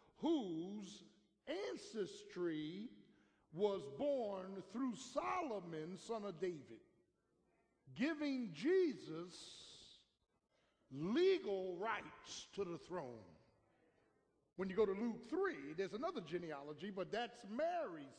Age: 50-69